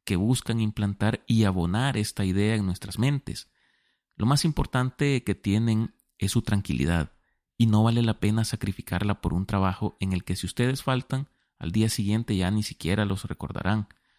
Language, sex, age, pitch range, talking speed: Spanish, male, 30-49, 95-115 Hz, 175 wpm